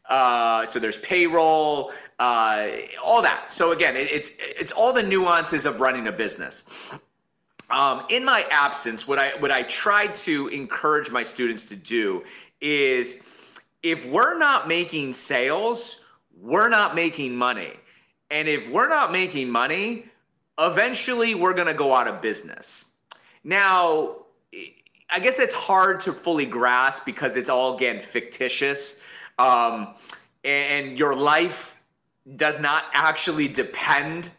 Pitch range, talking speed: 140-205 Hz, 140 wpm